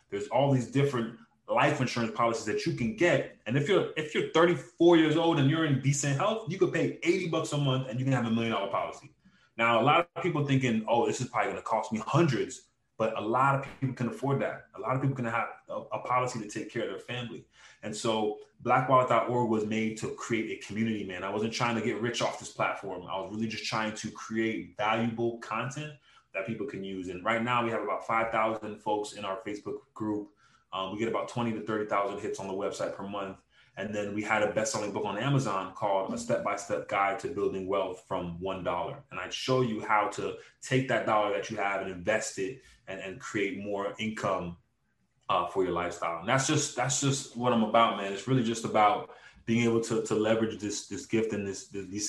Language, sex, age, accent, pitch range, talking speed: English, male, 20-39, American, 105-130 Hz, 230 wpm